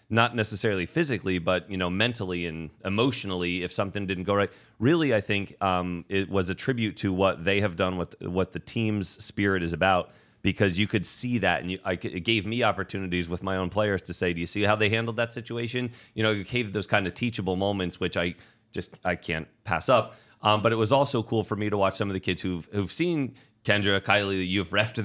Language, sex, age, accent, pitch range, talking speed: English, male, 30-49, American, 90-110 Hz, 230 wpm